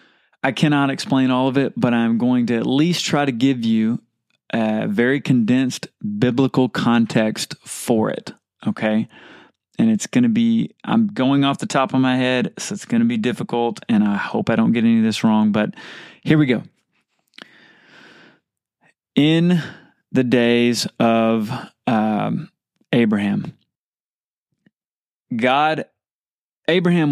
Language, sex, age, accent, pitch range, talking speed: English, male, 20-39, American, 115-155 Hz, 145 wpm